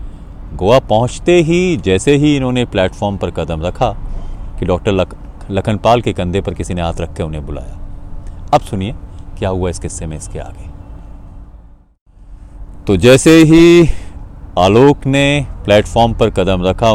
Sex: male